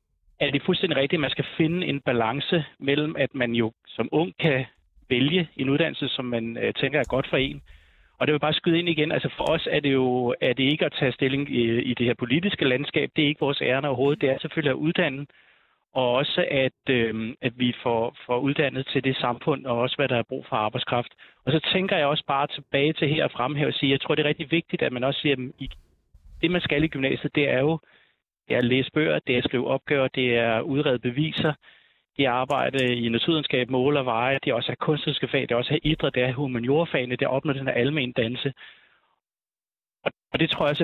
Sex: male